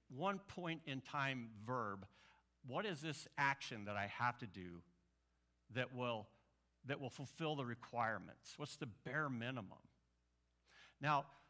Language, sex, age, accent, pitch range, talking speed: English, male, 60-79, American, 110-155 Hz, 135 wpm